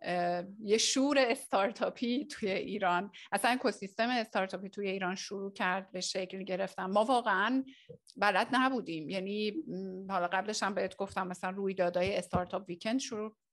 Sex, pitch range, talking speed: female, 190-245 Hz, 135 wpm